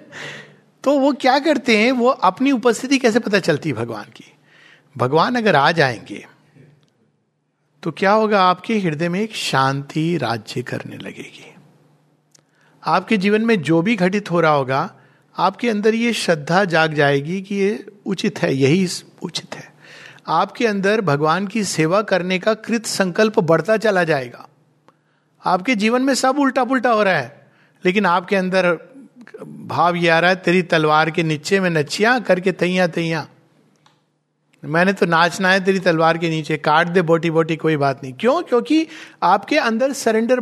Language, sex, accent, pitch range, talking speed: Hindi, male, native, 160-230 Hz, 160 wpm